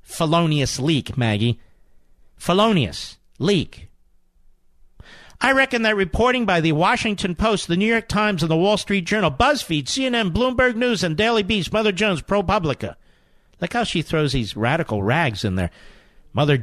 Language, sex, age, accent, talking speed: English, male, 50-69, American, 150 wpm